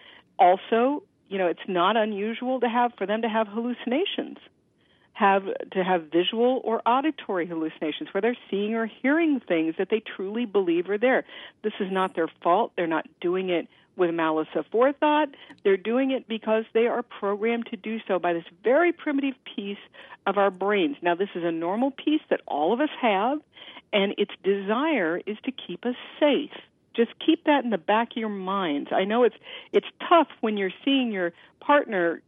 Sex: female